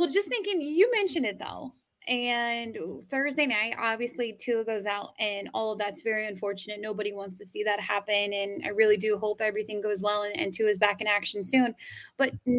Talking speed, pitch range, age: 205 wpm, 210-270 Hz, 10-29